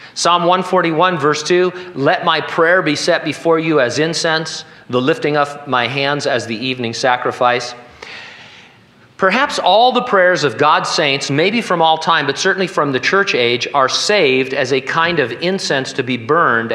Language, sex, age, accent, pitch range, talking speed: English, male, 50-69, American, 125-175 Hz, 175 wpm